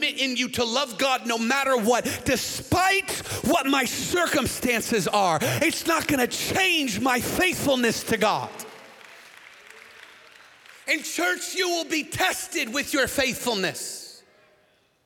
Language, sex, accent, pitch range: English, male, American, 200-285 Hz